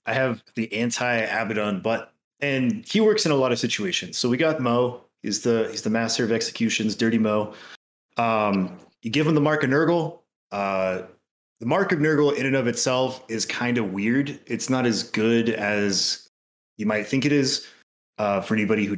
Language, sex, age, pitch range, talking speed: English, male, 20-39, 110-145 Hz, 195 wpm